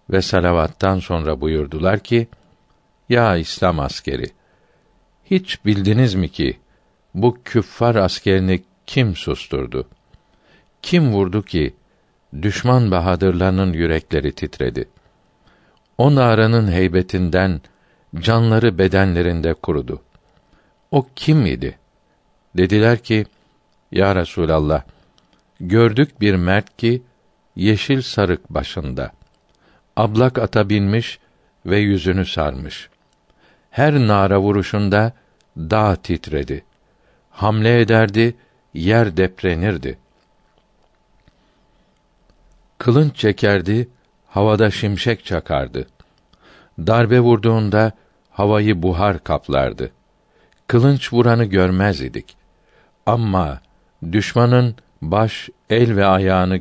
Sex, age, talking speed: male, 60-79, 85 wpm